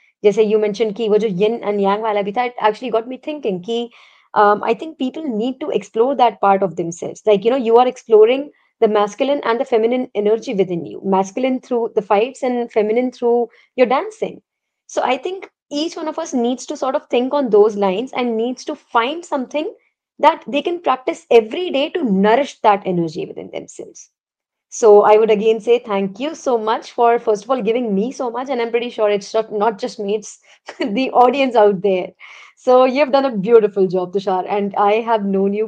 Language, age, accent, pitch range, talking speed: English, 20-39, Indian, 205-255 Hz, 200 wpm